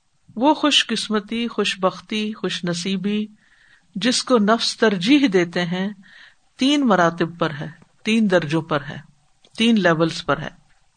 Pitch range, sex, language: 175-235 Hz, female, Urdu